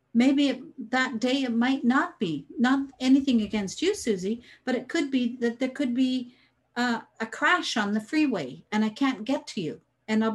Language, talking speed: English, 205 wpm